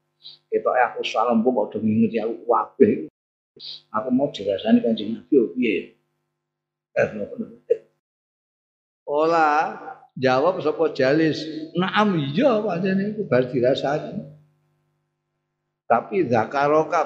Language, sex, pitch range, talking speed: Indonesian, male, 130-175 Hz, 115 wpm